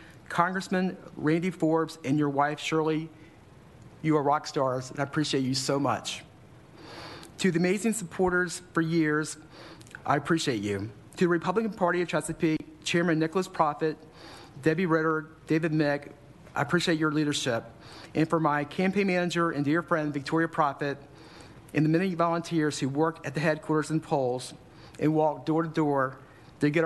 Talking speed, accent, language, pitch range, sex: 160 wpm, American, English, 150-170 Hz, male